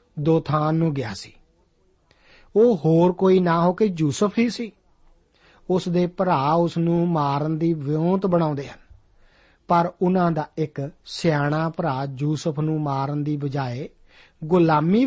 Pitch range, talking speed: 145-180 Hz, 145 wpm